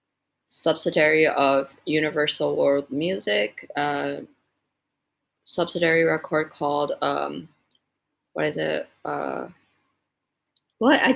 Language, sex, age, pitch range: English, female, 20-39, 150-190 Hz